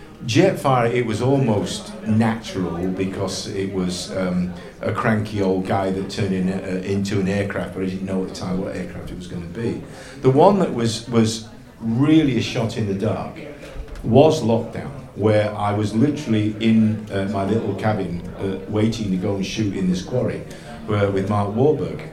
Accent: British